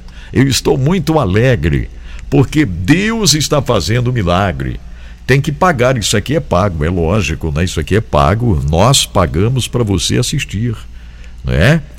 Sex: male